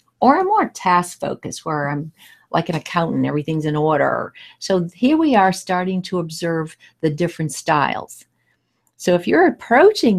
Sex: female